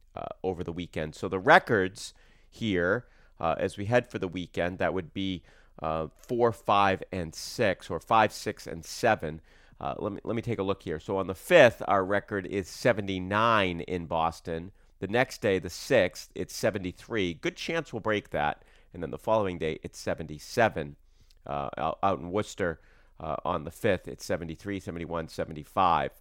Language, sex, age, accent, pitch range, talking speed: English, male, 40-59, American, 85-105 Hz, 180 wpm